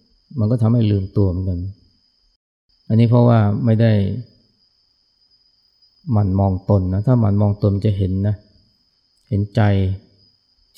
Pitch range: 95-110 Hz